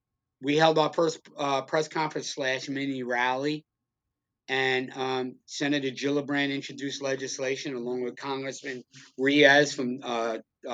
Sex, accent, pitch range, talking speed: male, American, 125-155 Hz, 125 wpm